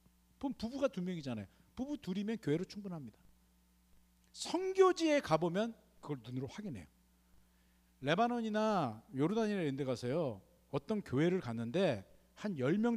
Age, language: 40-59, Korean